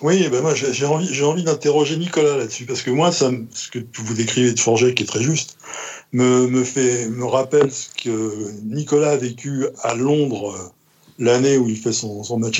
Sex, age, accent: male, 60-79, French